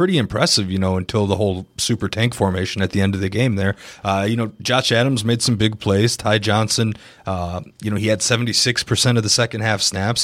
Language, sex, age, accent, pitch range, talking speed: English, male, 20-39, American, 100-120 Hz, 235 wpm